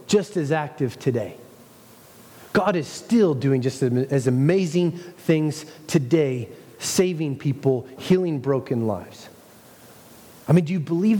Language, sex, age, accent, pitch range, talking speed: English, male, 30-49, American, 150-180 Hz, 125 wpm